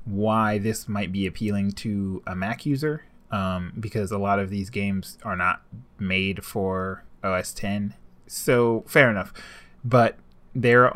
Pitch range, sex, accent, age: 95-125 Hz, male, American, 20-39